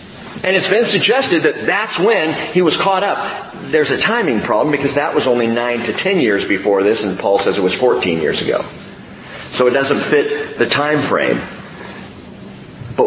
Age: 50-69